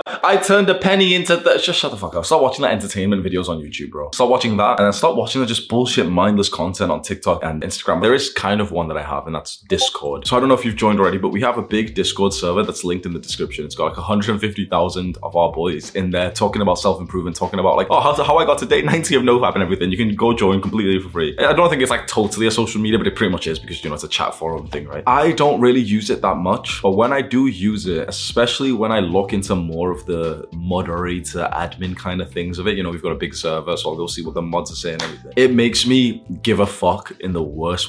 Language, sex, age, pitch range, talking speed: English, male, 20-39, 90-125 Hz, 285 wpm